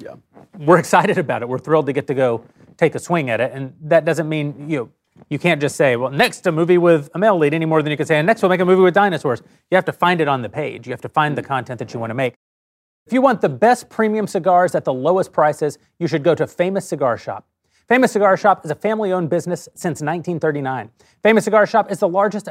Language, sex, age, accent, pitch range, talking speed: English, male, 30-49, American, 150-195 Hz, 265 wpm